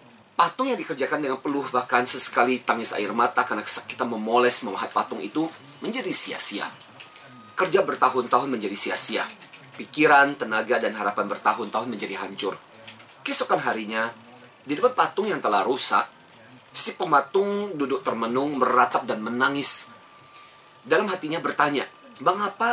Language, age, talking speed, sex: Indonesian, 30-49, 125 wpm, male